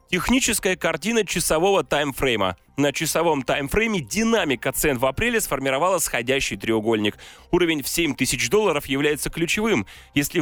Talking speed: 120 wpm